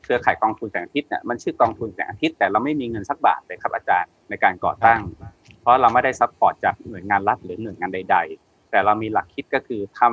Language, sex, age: Thai, male, 20-39